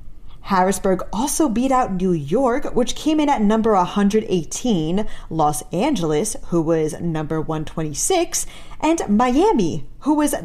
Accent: American